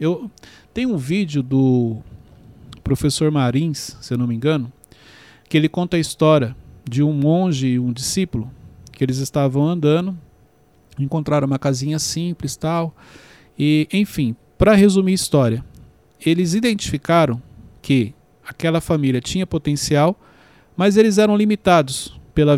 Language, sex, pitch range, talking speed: Portuguese, male, 135-180 Hz, 135 wpm